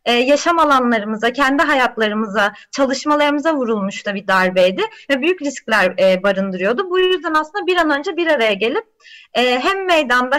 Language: Turkish